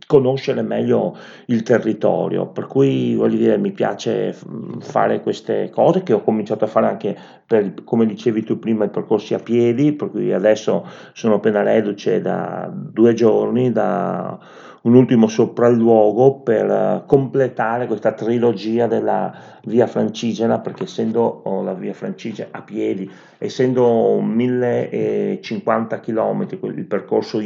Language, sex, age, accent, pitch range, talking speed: Italian, male, 40-59, native, 110-130 Hz, 130 wpm